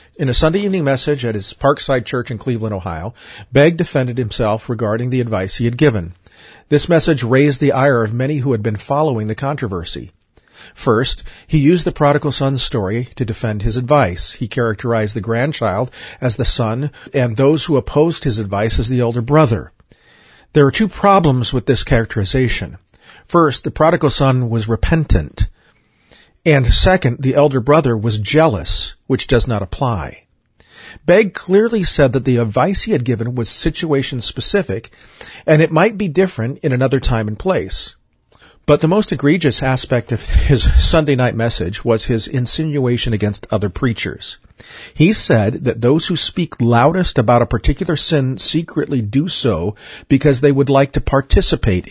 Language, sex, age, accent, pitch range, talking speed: English, male, 40-59, American, 115-150 Hz, 165 wpm